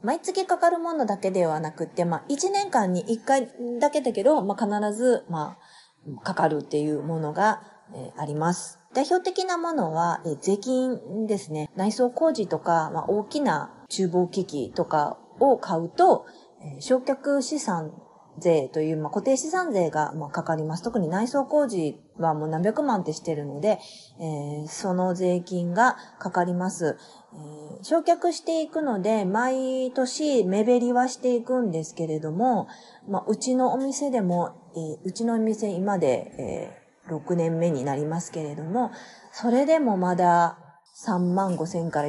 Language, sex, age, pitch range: Japanese, female, 30-49, 160-255 Hz